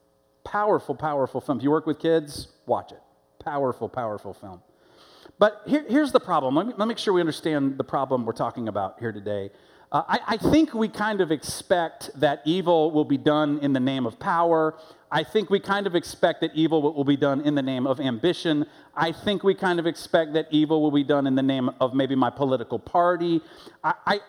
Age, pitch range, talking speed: 40-59, 150-235 Hz, 215 wpm